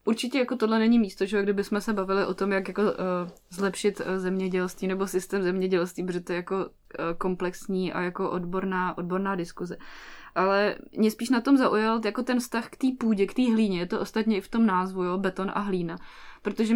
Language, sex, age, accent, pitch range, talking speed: Czech, female, 20-39, native, 195-220 Hz, 195 wpm